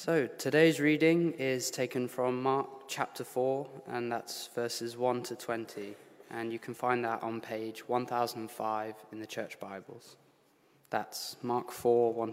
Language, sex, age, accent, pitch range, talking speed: English, male, 20-39, British, 115-145 Hz, 150 wpm